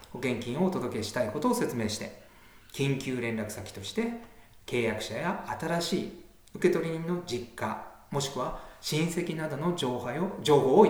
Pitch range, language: 105-180 Hz, Japanese